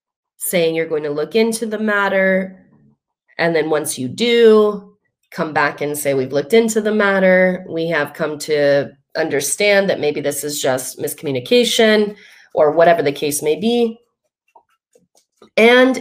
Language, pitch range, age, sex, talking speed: English, 165-220 Hz, 30-49, female, 150 wpm